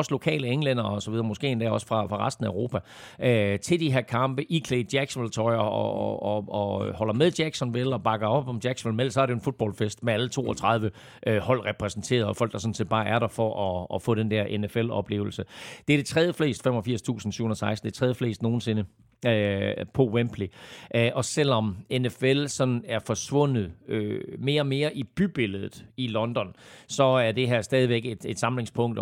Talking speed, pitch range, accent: 195 wpm, 105-130 Hz, native